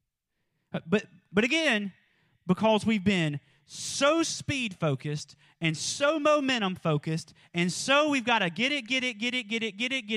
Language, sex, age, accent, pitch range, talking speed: English, male, 30-49, American, 170-265 Hz, 160 wpm